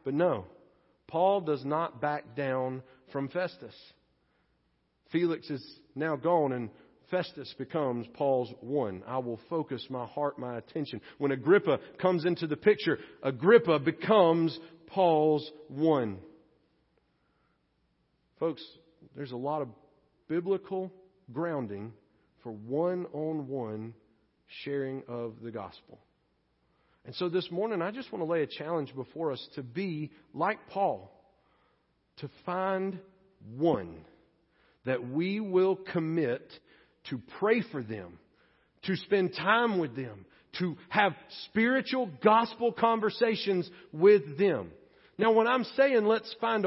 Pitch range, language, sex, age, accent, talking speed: 135-190 Hz, English, male, 40-59, American, 120 wpm